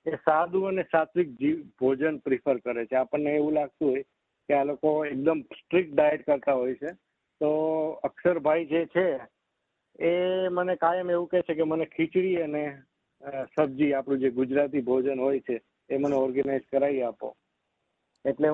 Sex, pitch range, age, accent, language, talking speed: male, 145-170 Hz, 50-69, native, Gujarati, 115 wpm